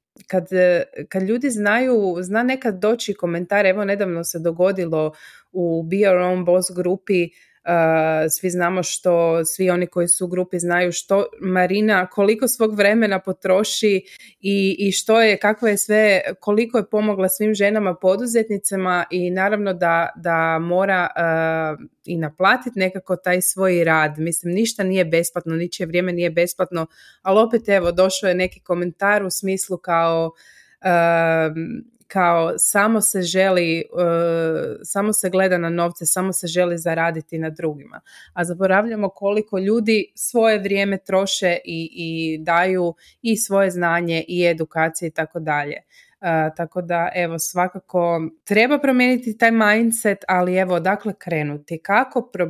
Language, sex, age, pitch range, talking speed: Croatian, female, 20-39, 170-200 Hz, 140 wpm